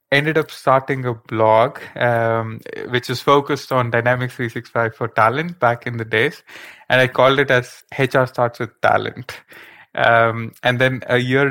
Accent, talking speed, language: Indian, 165 wpm, English